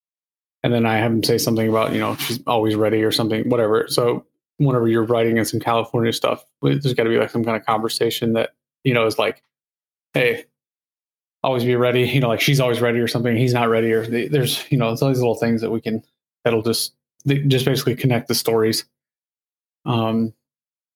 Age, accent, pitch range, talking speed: 20-39, American, 115-125 Hz, 215 wpm